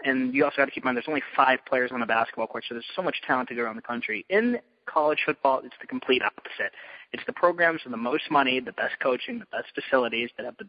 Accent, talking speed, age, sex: American, 275 wpm, 20-39, male